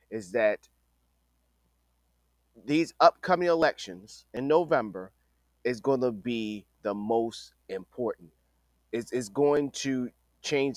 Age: 30-49